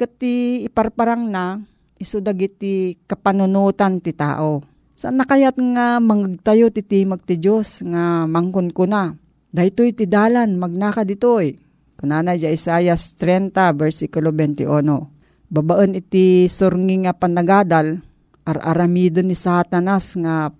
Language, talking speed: Filipino, 105 wpm